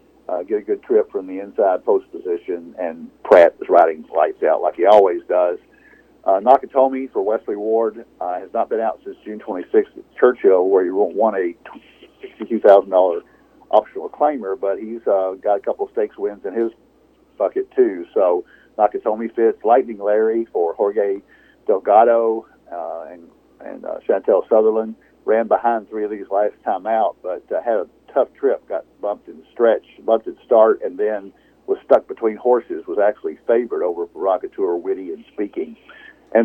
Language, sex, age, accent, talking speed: English, male, 50-69, American, 175 wpm